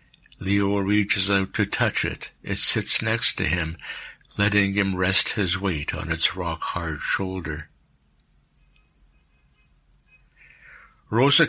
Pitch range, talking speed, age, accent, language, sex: 90-110 Hz, 110 wpm, 60-79, American, English, male